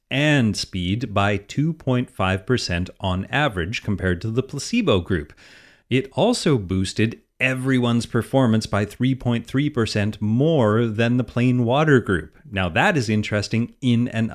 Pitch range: 95-130 Hz